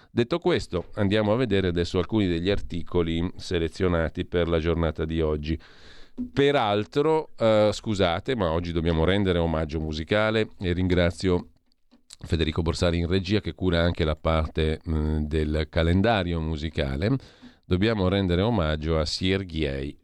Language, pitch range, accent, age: Italian, 80-100 Hz, native, 40-59